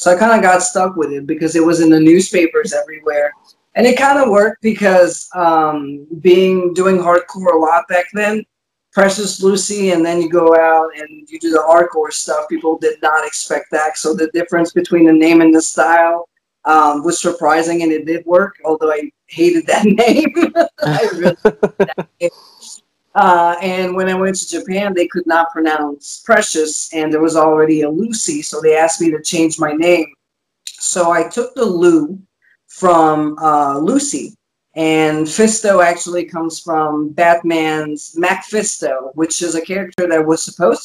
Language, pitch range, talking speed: English, 155-190 Hz, 180 wpm